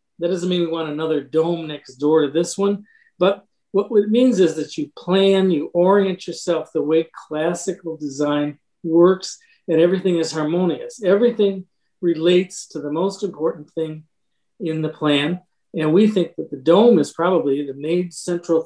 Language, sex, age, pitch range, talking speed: English, male, 50-69, 155-195 Hz, 170 wpm